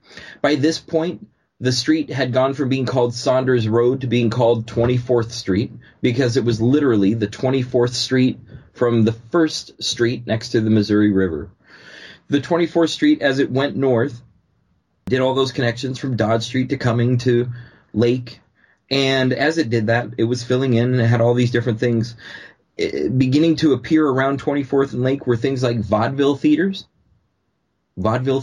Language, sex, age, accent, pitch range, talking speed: English, male, 30-49, American, 110-135 Hz, 170 wpm